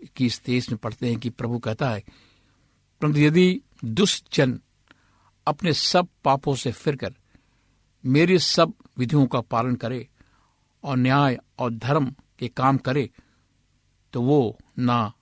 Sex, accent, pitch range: male, native, 110-140 Hz